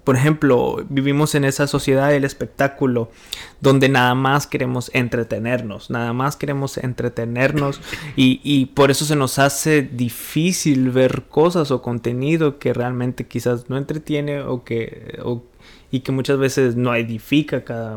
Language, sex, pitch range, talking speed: Spanish, male, 125-150 Hz, 150 wpm